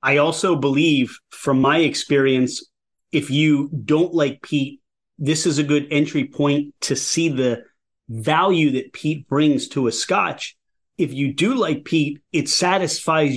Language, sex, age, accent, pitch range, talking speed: English, male, 30-49, American, 140-180 Hz, 155 wpm